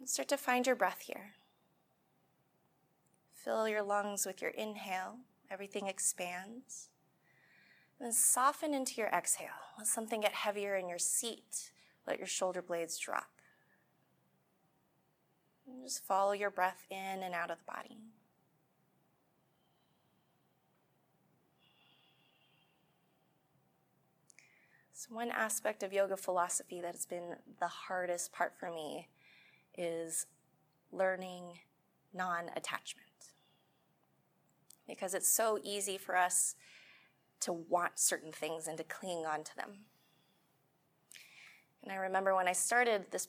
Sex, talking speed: female, 115 wpm